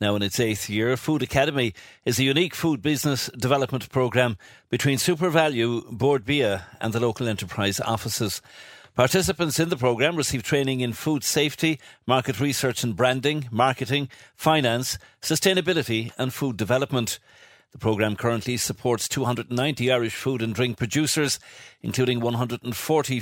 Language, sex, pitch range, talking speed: English, male, 110-140 Hz, 140 wpm